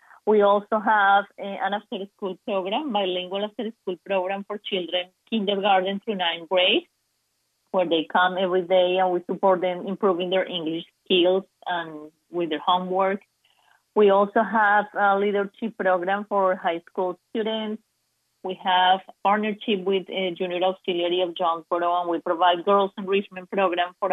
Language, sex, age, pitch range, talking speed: English, female, 30-49, 180-205 Hz, 145 wpm